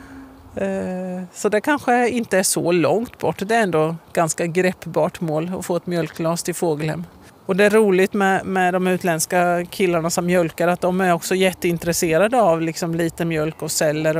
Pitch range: 160-200 Hz